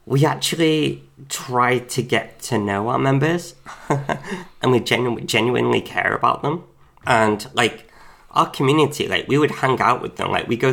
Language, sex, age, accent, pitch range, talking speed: English, male, 20-39, British, 115-145 Hz, 160 wpm